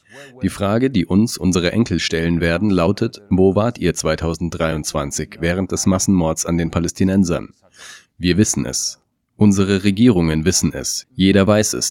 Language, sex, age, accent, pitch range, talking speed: German, male, 30-49, German, 85-105 Hz, 145 wpm